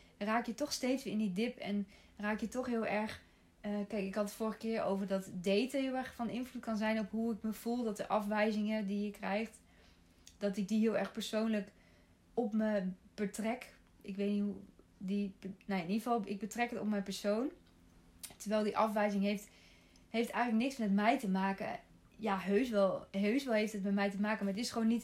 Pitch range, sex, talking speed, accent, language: 200-225 Hz, female, 220 wpm, Dutch, Dutch